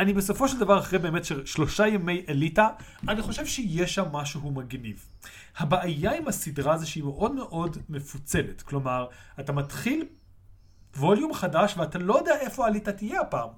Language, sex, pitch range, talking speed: Hebrew, male, 140-205 Hz, 160 wpm